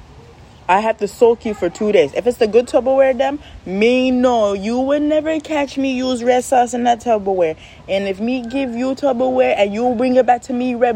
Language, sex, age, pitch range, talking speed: English, female, 20-39, 185-265 Hz, 225 wpm